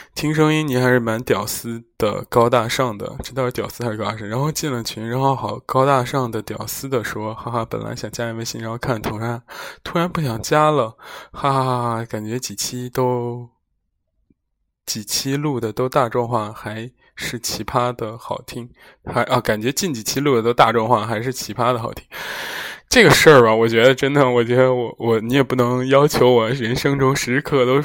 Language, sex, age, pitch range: Chinese, male, 20-39, 110-135 Hz